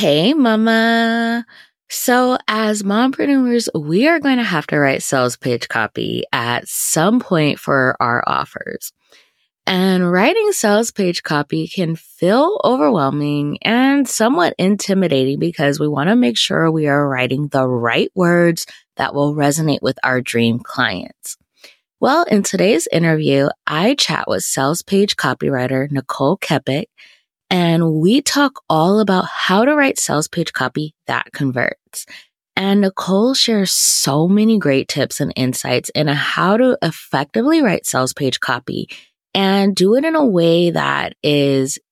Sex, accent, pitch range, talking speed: female, American, 145-215 Hz, 145 wpm